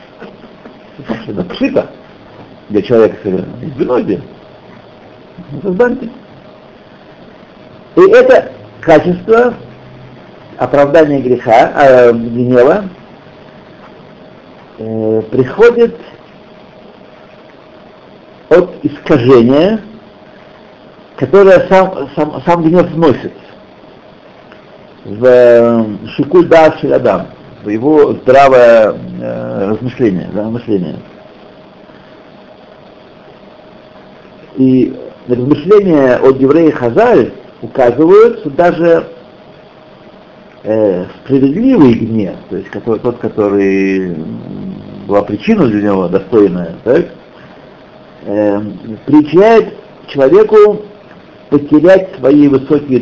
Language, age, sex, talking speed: Russian, 60-79, male, 65 wpm